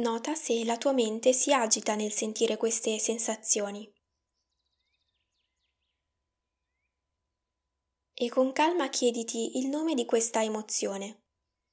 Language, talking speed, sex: Italian, 100 wpm, female